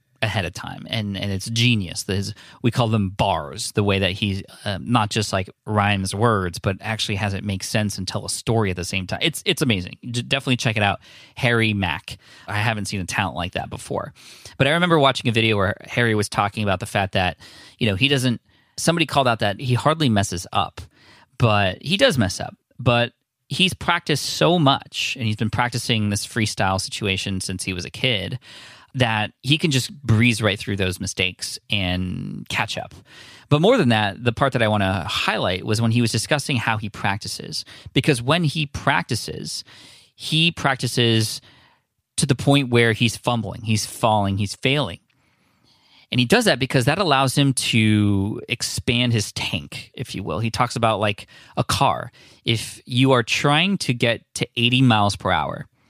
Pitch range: 100-130 Hz